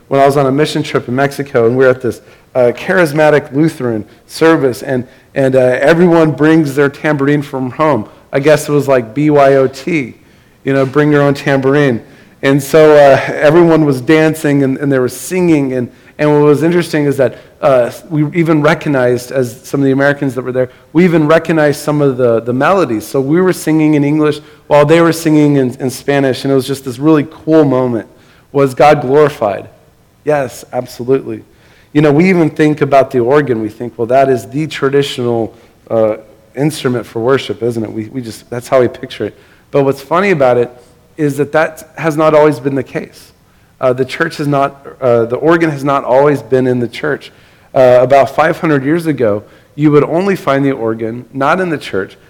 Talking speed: 200 wpm